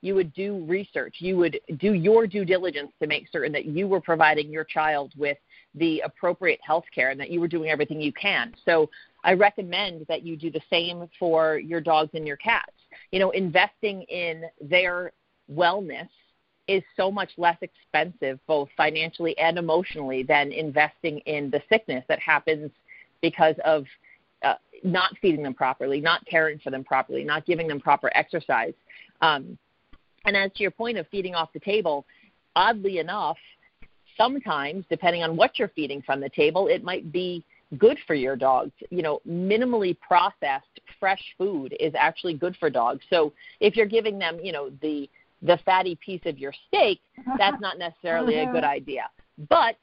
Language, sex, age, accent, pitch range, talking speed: English, female, 40-59, American, 155-190 Hz, 175 wpm